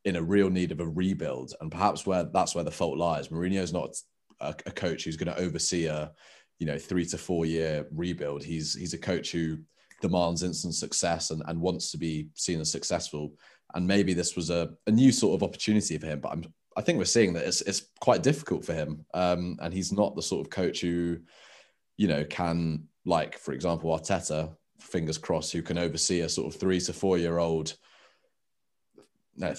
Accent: British